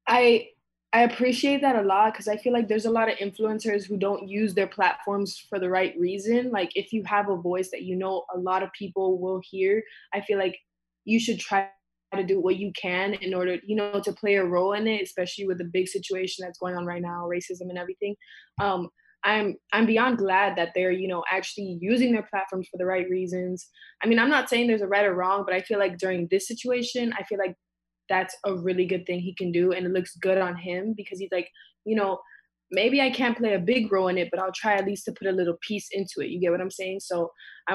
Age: 20-39